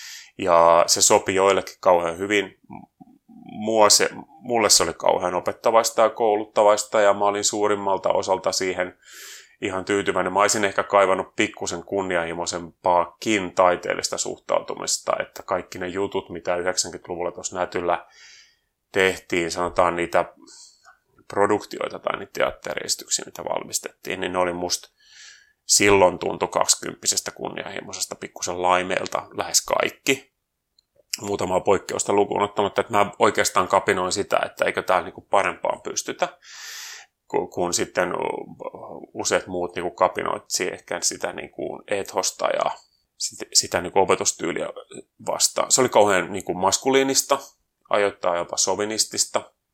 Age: 30-49